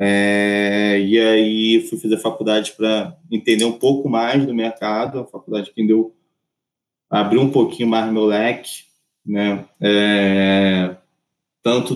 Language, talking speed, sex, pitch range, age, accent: Portuguese, 135 wpm, male, 105-140 Hz, 20-39, Brazilian